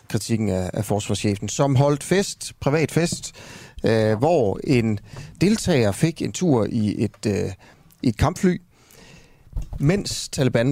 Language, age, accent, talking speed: Danish, 30-49, native, 135 wpm